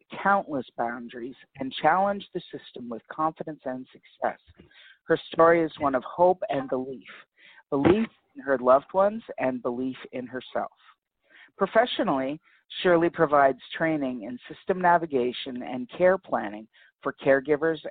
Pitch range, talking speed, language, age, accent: 130-165 Hz, 130 wpm, English, 50-69, American